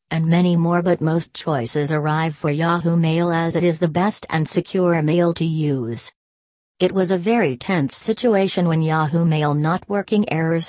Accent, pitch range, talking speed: American, 145-180 Hz, 180 wpm